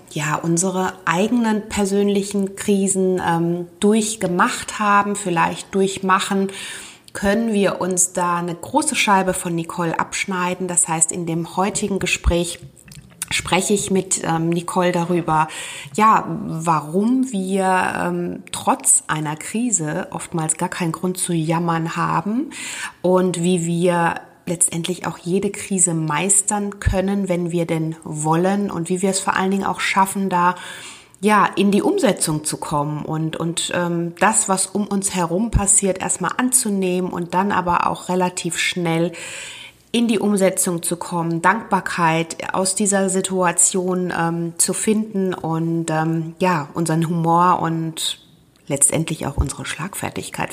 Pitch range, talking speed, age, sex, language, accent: 165-195 Hz, 135 wpm, 20-39, female, German, German